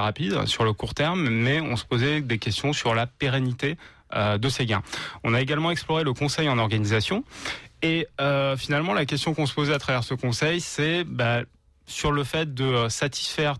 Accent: French